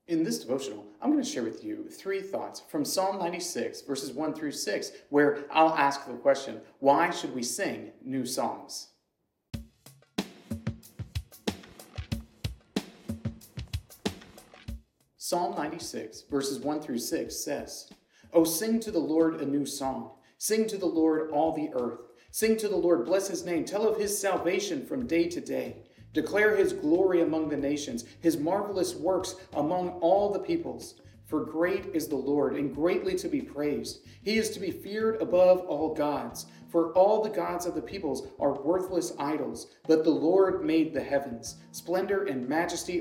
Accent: American